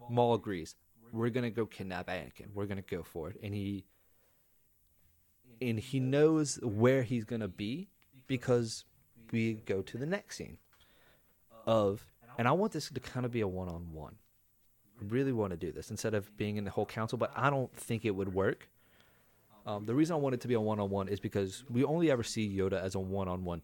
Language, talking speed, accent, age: English, 210 wpm, American, 30-49